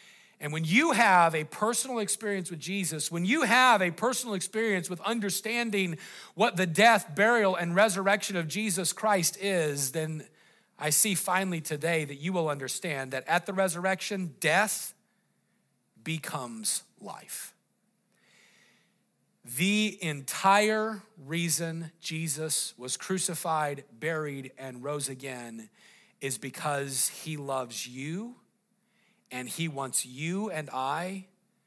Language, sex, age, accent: English, male, 40-59, American